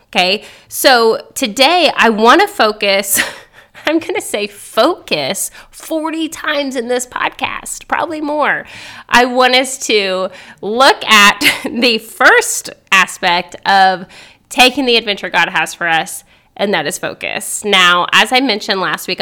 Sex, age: female, 20-39